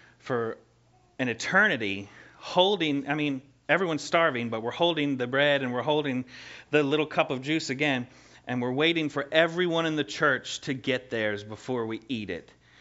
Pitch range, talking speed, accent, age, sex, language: 115-150 Hz, 175 wpm, American, 30-49, male, English